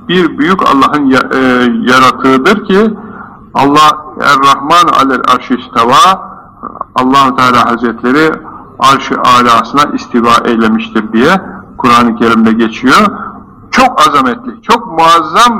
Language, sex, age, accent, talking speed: Turkish, male, 60-79, native, 90 wpm